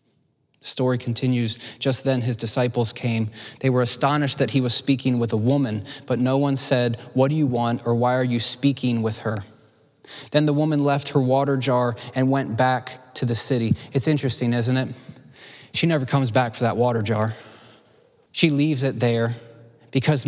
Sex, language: male, English